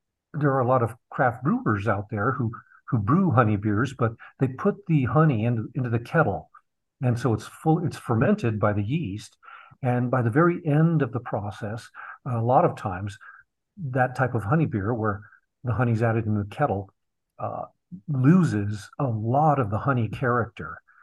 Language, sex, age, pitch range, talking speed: English, male, 50-69, 110-140 Hz, 185 wpm